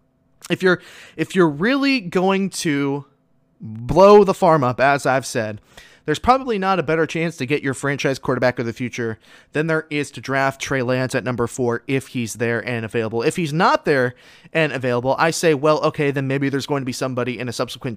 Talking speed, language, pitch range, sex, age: 210 wpm, English, 130-155 Hz, male, 20-39